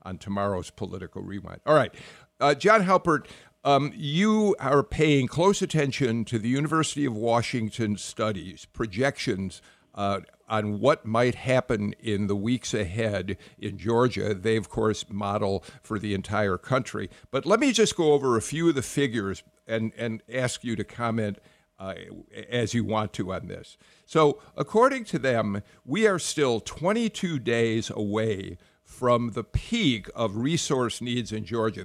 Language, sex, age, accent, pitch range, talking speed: English, male, 50-69, American, 105-145 Hz, 155 wpm